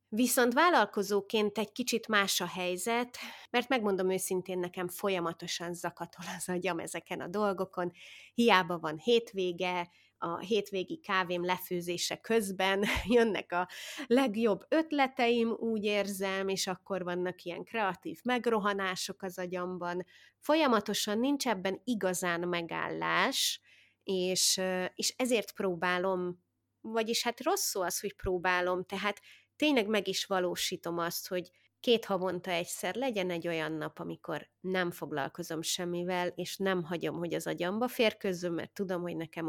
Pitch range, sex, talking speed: 180-225 Hz, female, 130 wpm